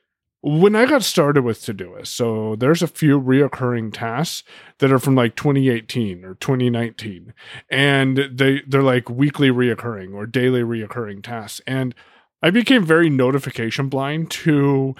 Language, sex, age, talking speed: English, male, 20-39, 145 wpm